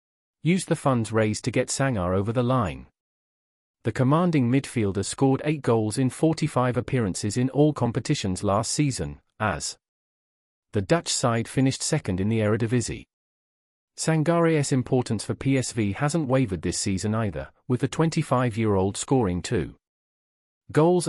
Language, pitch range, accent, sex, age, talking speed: English, 105-140 Hz, British, male, 40-59, 135 wpm